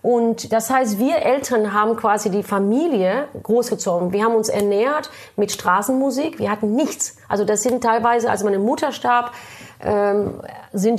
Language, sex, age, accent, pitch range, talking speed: German, female, 30-49, German, 200-250 Hz, 155 wpm